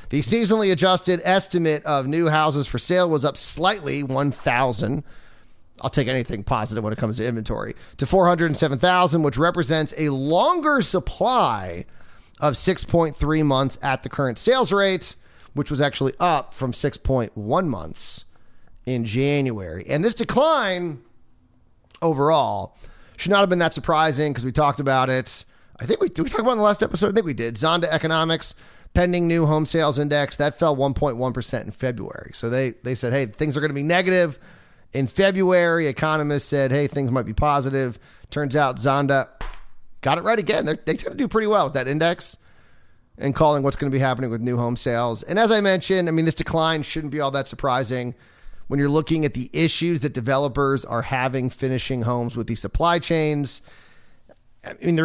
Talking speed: 185 wpm